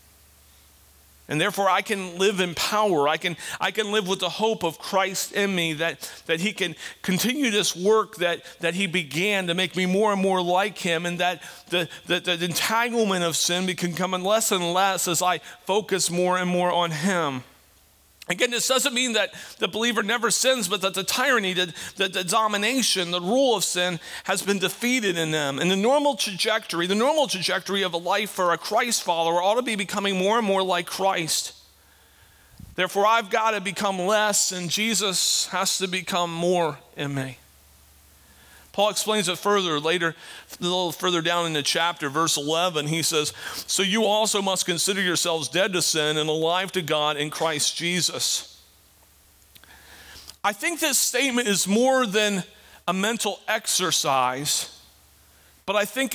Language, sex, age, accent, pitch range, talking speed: English, male, 40-59, American, 160-205 Hz, 175 wpm